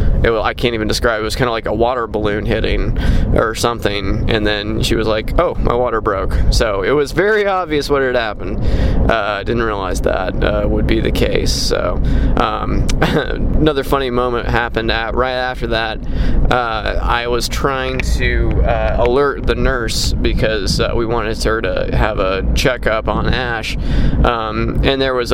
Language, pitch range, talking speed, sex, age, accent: English, 110-130 Hz, 175 wpm, male, 20-39, American